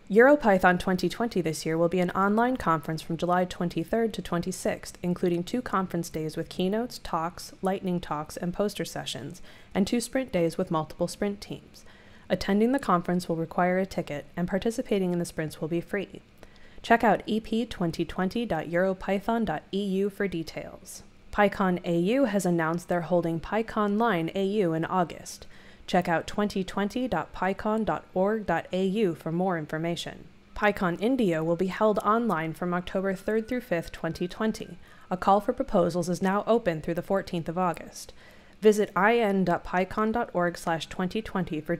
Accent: American